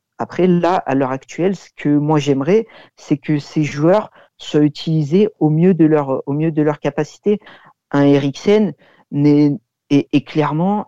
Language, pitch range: French, 140-170 Hz